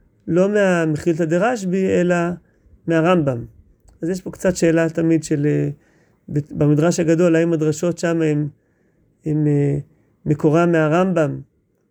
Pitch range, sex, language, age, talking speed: 155-185 Hz, male, Hebrew, 30-49, 105 wpm